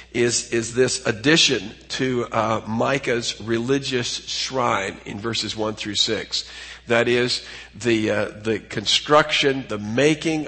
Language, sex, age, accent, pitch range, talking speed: English, male, 50-69, American, 115-150 Hz, 125 wpm